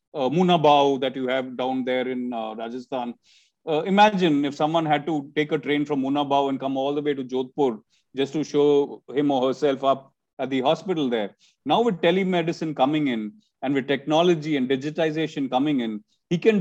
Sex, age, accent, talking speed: male, 30-49, native, 190 wpm